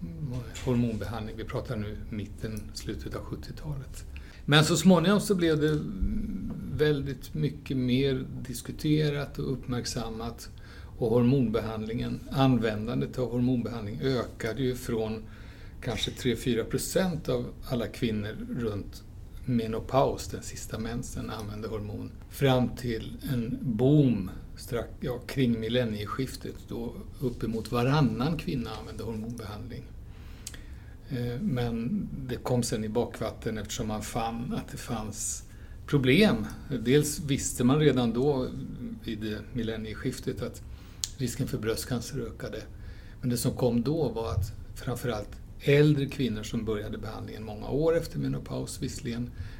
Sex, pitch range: male, 105-130 Hz